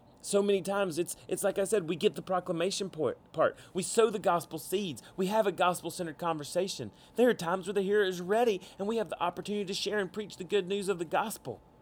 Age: 30-49